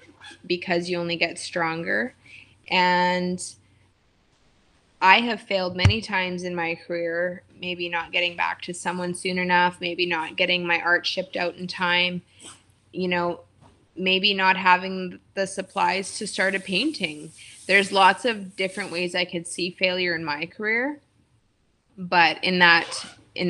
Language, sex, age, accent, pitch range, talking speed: English, female, 20-39, American, 170-185 Hz, 150 wpm